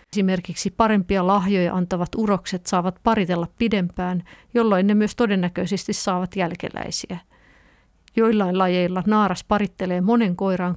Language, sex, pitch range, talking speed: Finnish, female, 180-220 Hz, 110 wpm